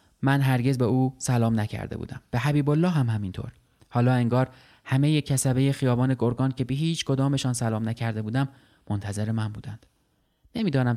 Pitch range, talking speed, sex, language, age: 110-130 Hz, 160 wpm, male, Persian, 30-49